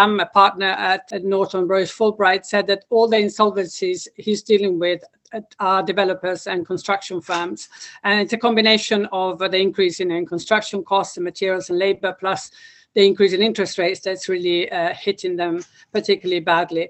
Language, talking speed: English, 165 wpm